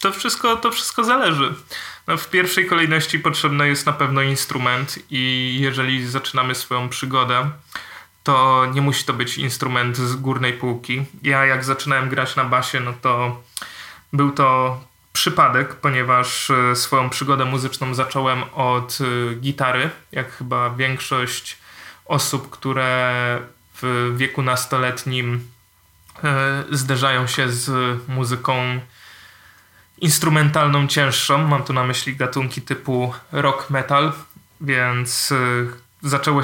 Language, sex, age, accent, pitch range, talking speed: Polish, male, 20-39, native, 125-145 Hz, 110 wpm